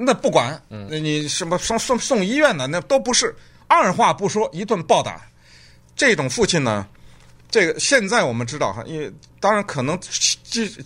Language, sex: Chinese, male